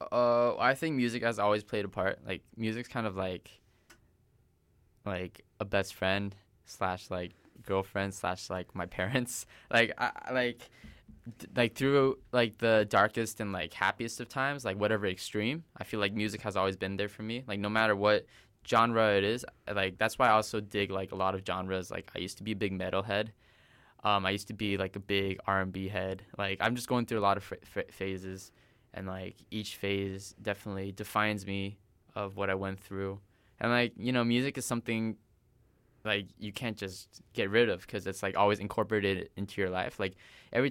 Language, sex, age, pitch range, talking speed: English, male, 10-29, 95-115 Hz, 205 wpm